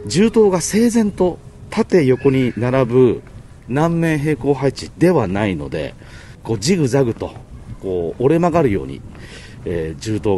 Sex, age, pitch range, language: male, 40-59, 105-140 Hz, Japanese